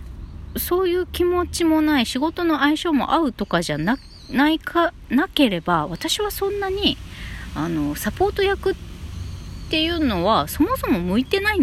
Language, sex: Japanese, female